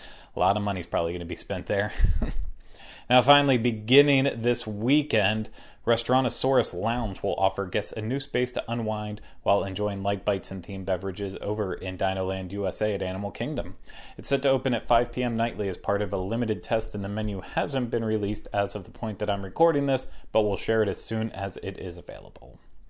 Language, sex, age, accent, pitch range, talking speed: English, male, 30-49, American, 100-120 Hz, 205 wpm